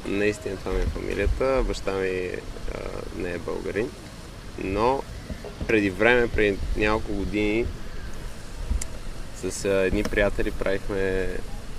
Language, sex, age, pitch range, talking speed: Bulgarian, male, 20-39, 95-115 Hz, 110 wpm